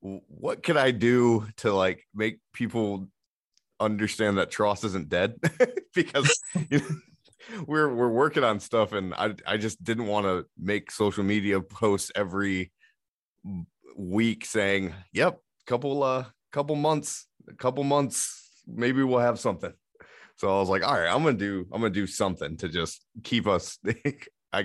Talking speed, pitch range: 160 wpm, 95-120 Hz